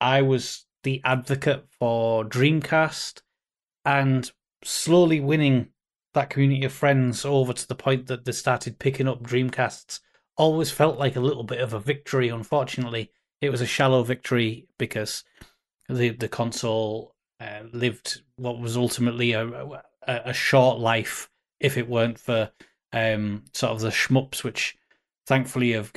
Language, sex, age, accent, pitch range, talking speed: English, male, 30-49, British, 115-135 Hz, 150 wpm